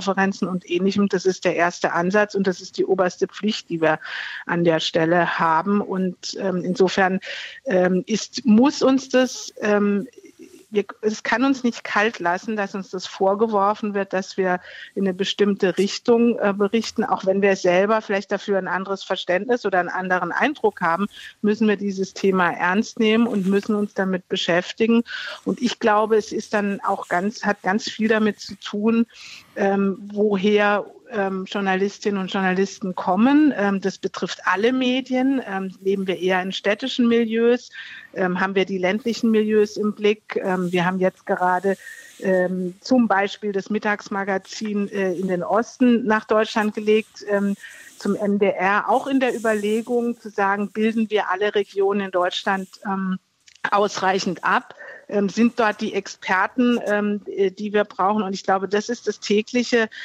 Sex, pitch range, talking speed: female, 190-220 Hz, 165 wpm